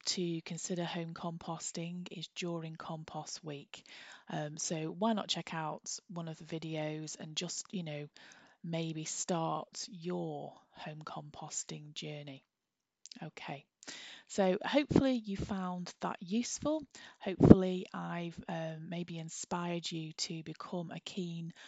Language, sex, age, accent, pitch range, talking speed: English, female, 20-39, British, 160-190 Hz, 125 wpm